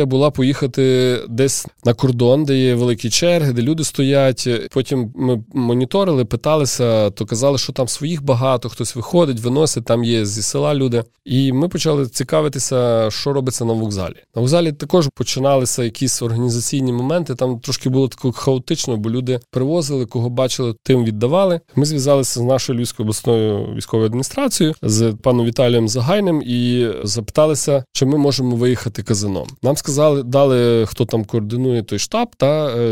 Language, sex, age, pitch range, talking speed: Ukrainian, male, 20-39, 120-145 Hz, 160 wpm